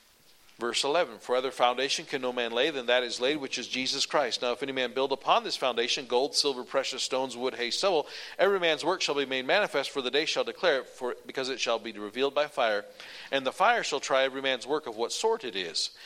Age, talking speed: 40-59, 245 wpm